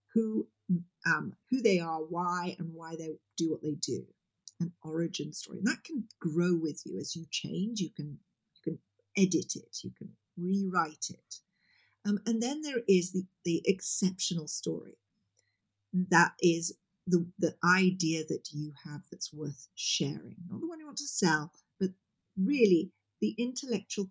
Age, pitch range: 50-69, 160-200 Hz